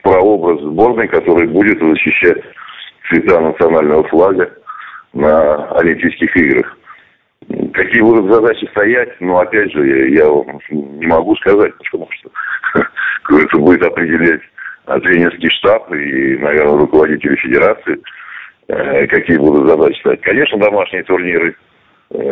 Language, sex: Russian, male